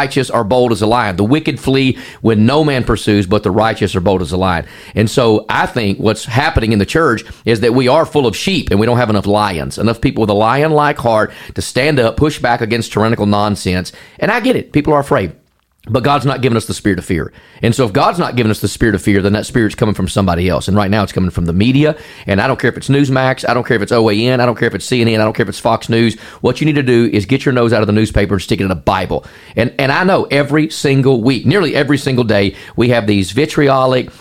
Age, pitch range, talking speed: 40-59, 110-140 Hz, 280 wpm